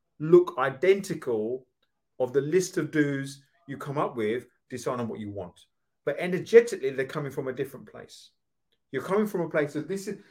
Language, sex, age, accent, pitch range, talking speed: English, male, 30-49, British, 120-175 Hz, 185 wpm